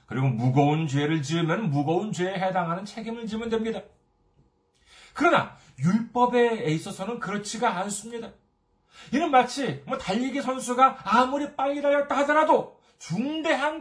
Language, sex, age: Korean, male, 40-59